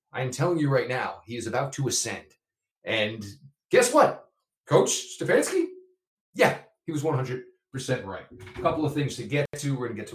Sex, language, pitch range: male, English, 110-150 Hz